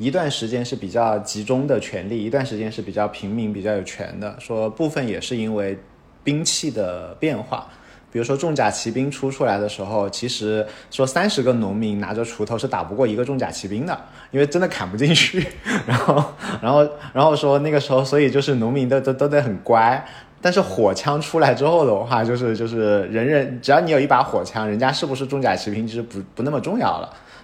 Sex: male